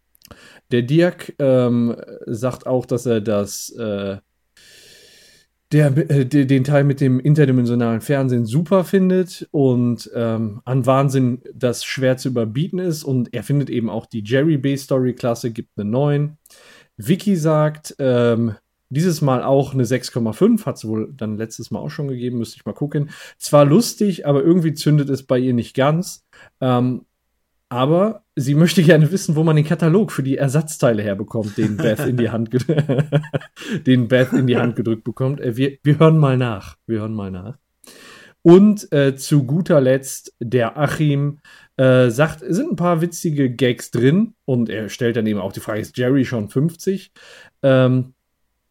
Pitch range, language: 120-155 Hz, German